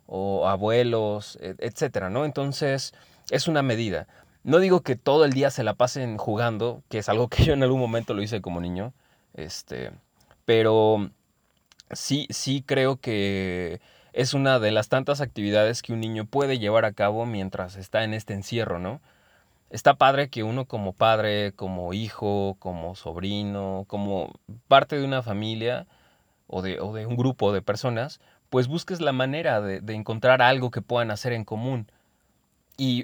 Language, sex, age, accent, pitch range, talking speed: Spanish, male, 30-49, Mexican, 100-130 Hz, 165 wpm